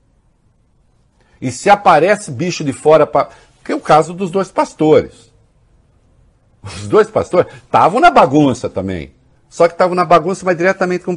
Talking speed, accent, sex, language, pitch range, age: 160 wpm, Brazilian, male, English, 100-165 Hz, 60-79